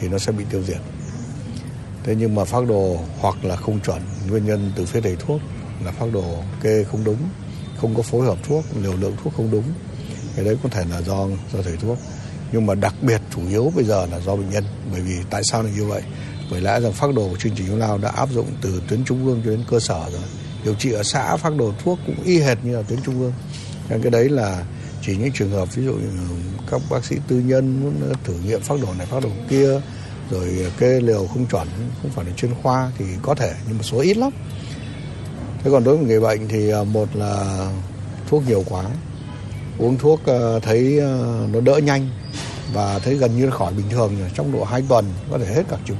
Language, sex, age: Vietnamese, male, 60-79